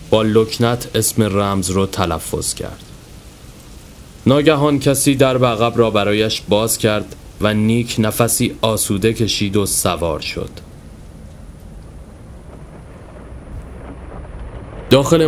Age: 30-49